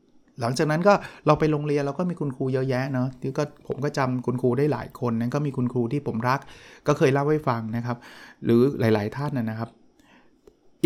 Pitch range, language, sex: 120-145 Hz, Thai, male